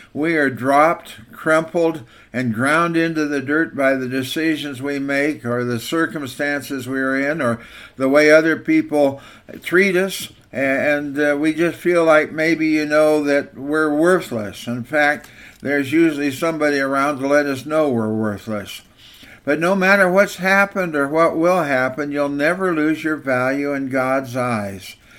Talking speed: 160 wpm